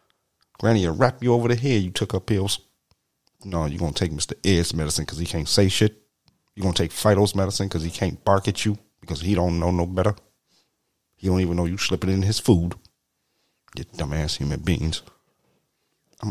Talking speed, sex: 200 wpm, male